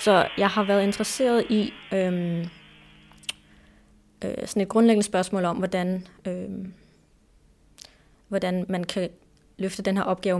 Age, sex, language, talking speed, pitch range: 20-39, female, Danish, 125 wpm, 180-210 Hz